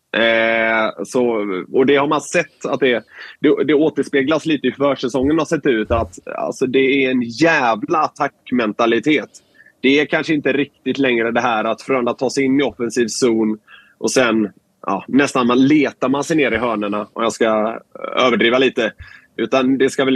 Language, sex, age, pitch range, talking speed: Swedish, male, 20-39, 120-155 Hz, 185 wpm